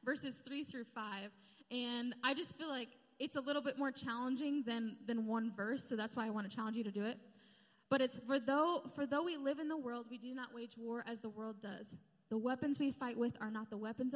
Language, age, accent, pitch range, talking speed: English, 10-29, American, 210-255 Hz, 245 wpm